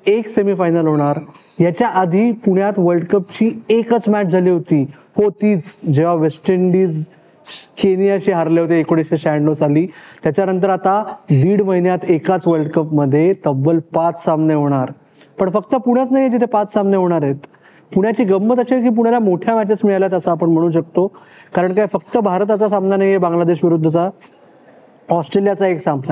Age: 20-39